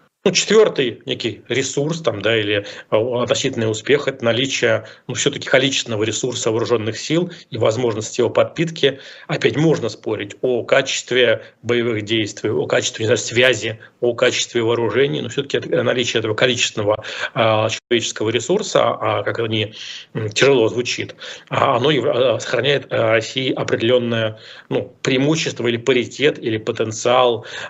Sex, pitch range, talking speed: male, 110-130 Hz, 125 wpm